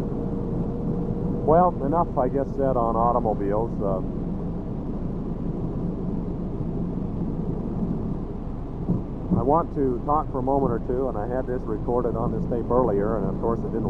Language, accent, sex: English, American, male